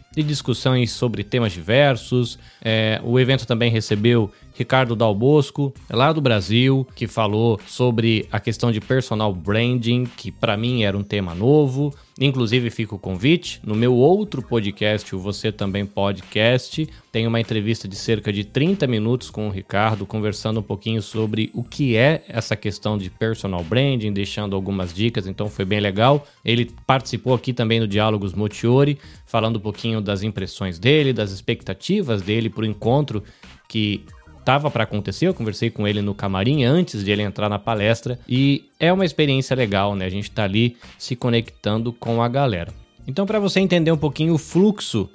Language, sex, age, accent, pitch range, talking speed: Portuguese, male, 20-39, Brazilian, 105-135 Hz, 170 wpm